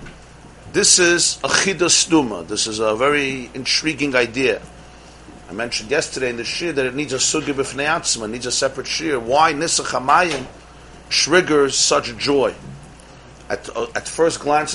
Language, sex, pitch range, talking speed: English, male, 125-155 Hz, 155 wpm